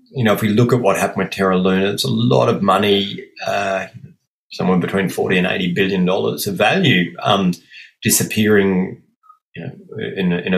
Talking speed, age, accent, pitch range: 170 wpm, 30-49, Australian, 90-120 Hz